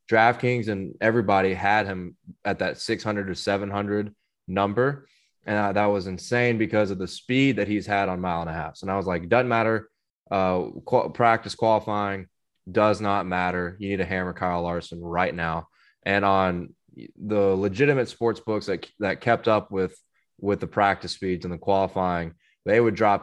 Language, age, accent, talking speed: English, 20-39, American, 180 wpm